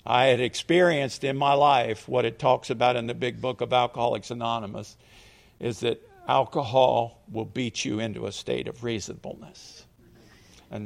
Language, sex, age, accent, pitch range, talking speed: English, male, 50-69, American, 115-160 Hz, 160 wpm